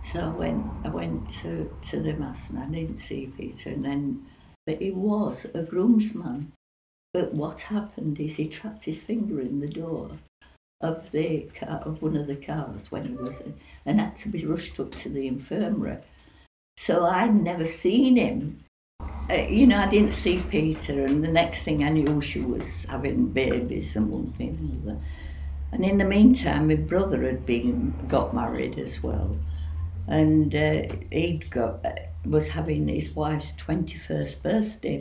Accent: British